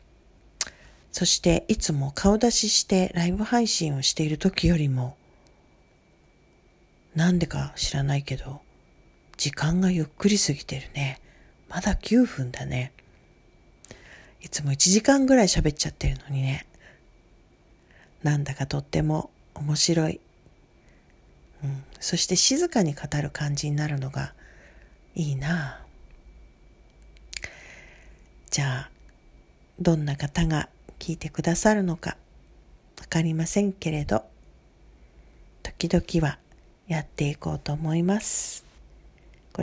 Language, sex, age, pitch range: Japanese, female, 40-59, 135-175 Hz